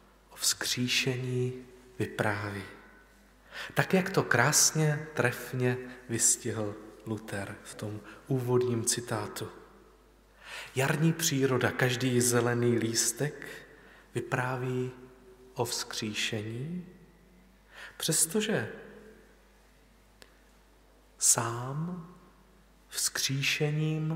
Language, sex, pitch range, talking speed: Czech, male, 115-150 Hz, 60 wpm